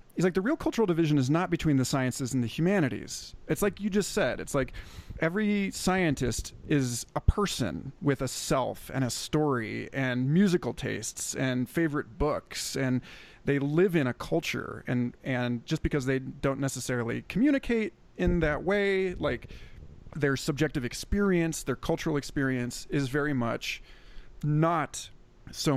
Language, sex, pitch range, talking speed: English, male, 125-160 Hz, 155 wpm